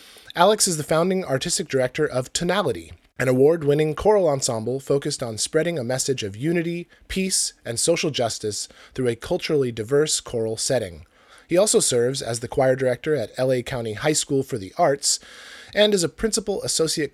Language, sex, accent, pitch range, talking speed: English, male, American, 110-150 Hz, 170 wpm